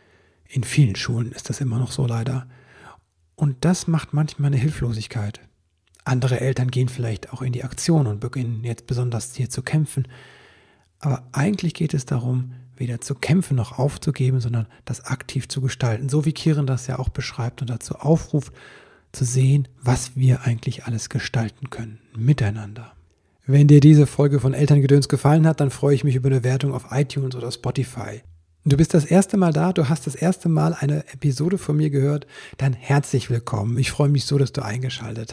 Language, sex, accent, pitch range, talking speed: German, male, German, 125-150 Hz, 185 wpm